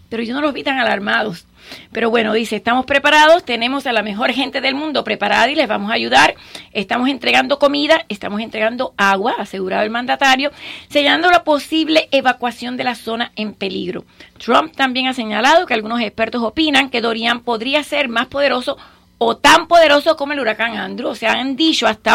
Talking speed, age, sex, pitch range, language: 185 wpm, 40-59, female, 230-285 Hz, English